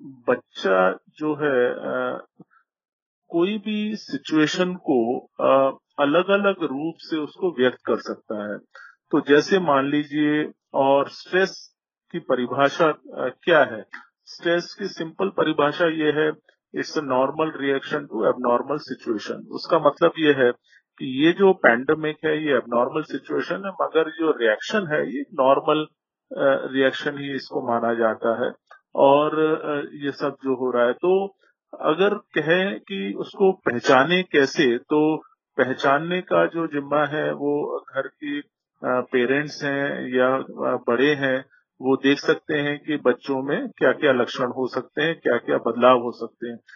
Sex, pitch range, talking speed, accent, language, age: male, 135-170 Hz, 95 wpm, native, Kannada, 40-59